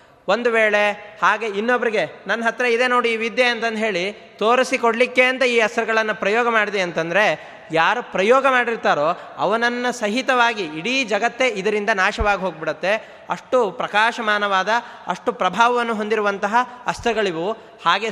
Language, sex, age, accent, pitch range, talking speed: Kannada, male, 20-39, native, 205-245 Hz, 120 wpm